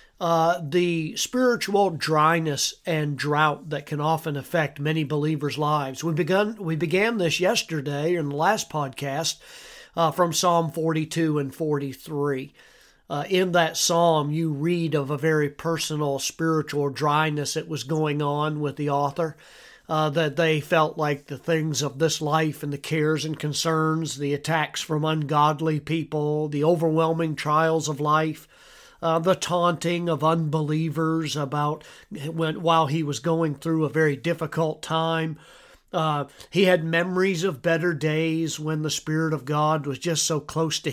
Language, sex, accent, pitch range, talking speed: English, male, American, 150-165 Hz, 150 wpm